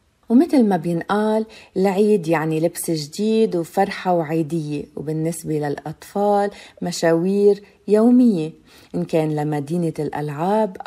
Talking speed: 95 wpm